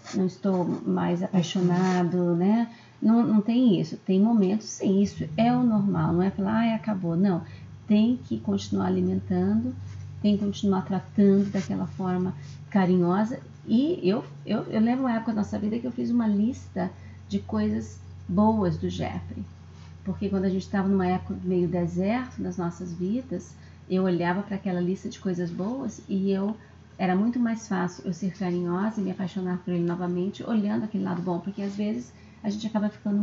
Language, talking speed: Portuguese, 180 wpm